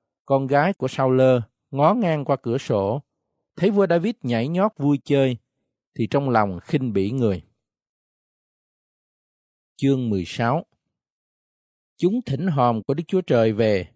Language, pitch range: Vietnamese, 115-155 Hz